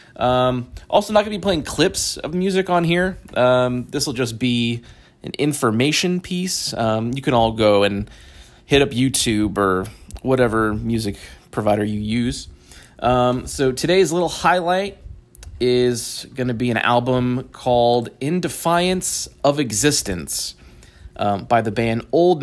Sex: male